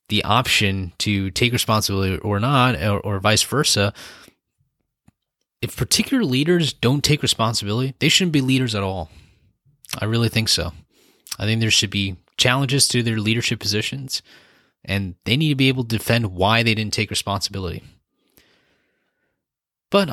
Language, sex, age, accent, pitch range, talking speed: English, male, 20-39, American, 100-130 Hz, 150 wpm